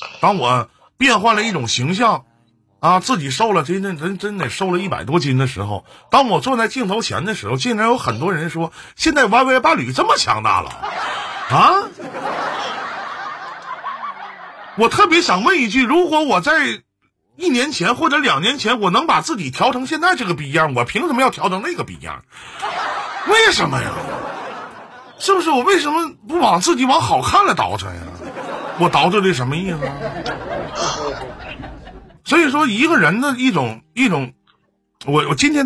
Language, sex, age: Chinese, male, 50-69